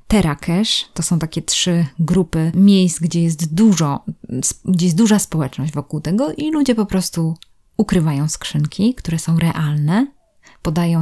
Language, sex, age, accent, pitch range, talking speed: Polish, female, 20-39, native, 160-190 Hz, 140 wpm